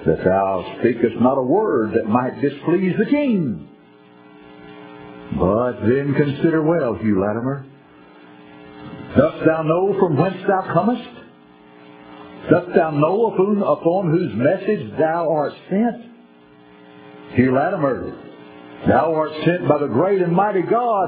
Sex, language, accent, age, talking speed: male, English, American, 50-69, 125 wpm